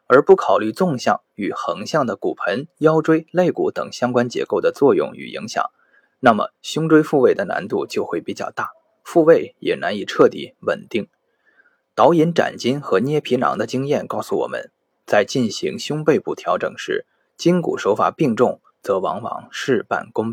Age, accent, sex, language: 20-39, native, male, Chinese